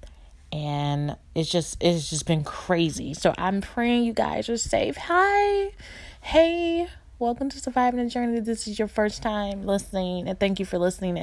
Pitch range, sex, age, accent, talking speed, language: 150-200 Hz, female, 20-39, American, 170 wpm, English